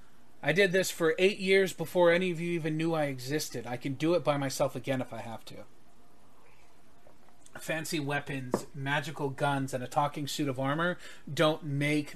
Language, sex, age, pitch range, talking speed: English, male, 30-49, 135-155 Hz, 185 wpm